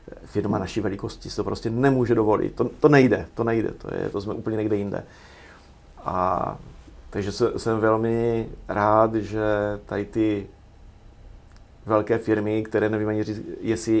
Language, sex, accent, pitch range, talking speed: Czech, male, native, 95-110 Hz, 150 wpm